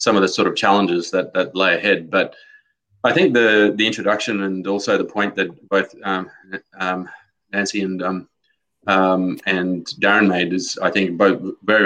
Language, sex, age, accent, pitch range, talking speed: English, male, 20-39, Australian, 90-100 Hz, 180 wpm